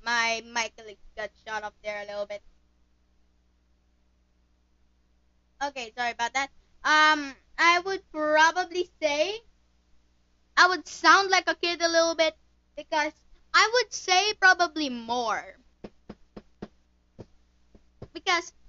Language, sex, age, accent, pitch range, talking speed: English, female, 20-39, Filipino, 220-315 Hz, 110 wpm